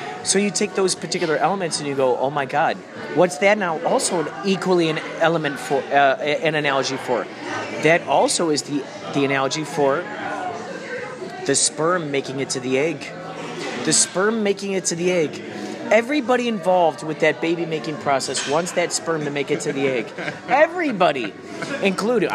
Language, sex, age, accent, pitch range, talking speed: English, male, 30-49, American, 155-210 Hz, 170 wpm